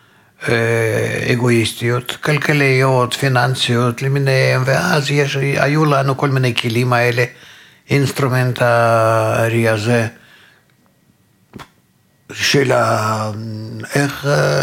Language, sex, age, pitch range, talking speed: Hebrew, male, 60-79, 115-135 Hz, 70 wpm